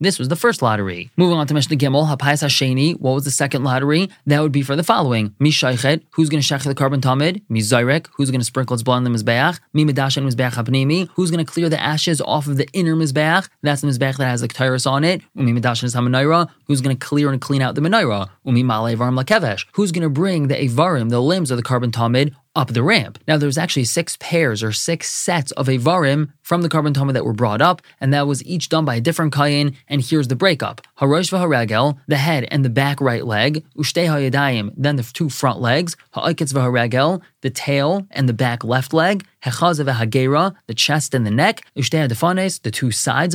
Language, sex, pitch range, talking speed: English, male, 130-165 Hz, 215 wpm